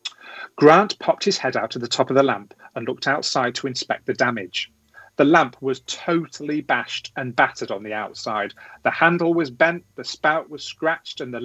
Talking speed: 200 wpm